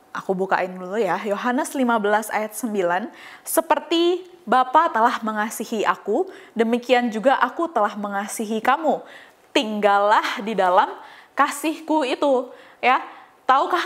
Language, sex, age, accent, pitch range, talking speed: Indonesian, female, 20-39, native, 205-285 Hz, 115 wpm